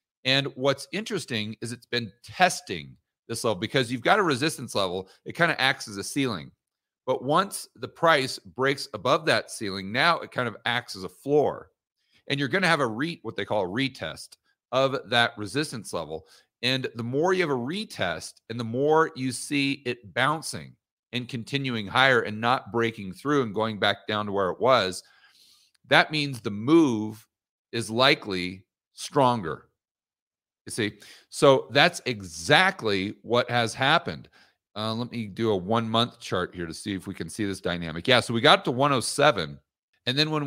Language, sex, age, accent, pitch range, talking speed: English, male, 40-59, American, 105-135 Hz, 185 wpm